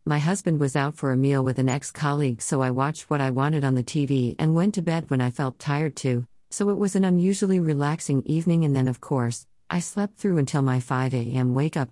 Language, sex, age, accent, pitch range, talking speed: English, female, 50-69, American, 130-170 Hz, 235 wpm